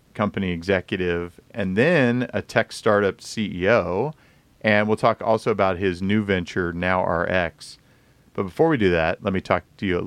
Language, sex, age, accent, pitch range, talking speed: English, male, 40-59, American, 90-110 Hz, 165 wpm